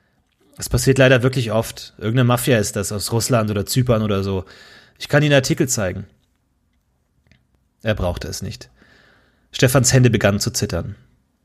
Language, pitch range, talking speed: German, 100-130 Hz, 150 wpm